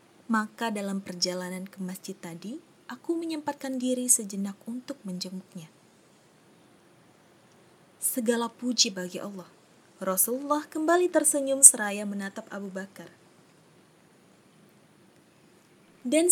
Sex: female